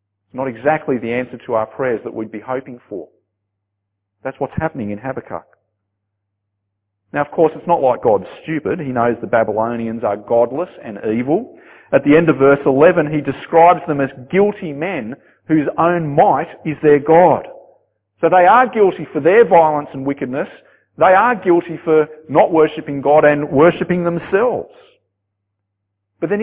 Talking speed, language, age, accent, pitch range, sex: 165 wpm, English, 40-59, Australian, 115-180 Hz, male